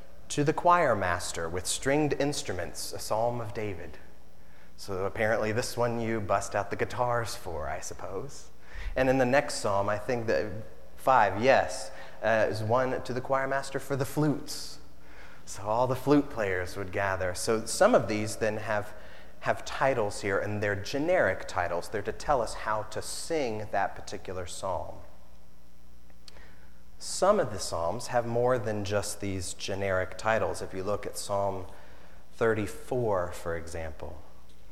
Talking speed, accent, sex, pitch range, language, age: 160 wpm, American, male, 90-115 Hz, English, 30-49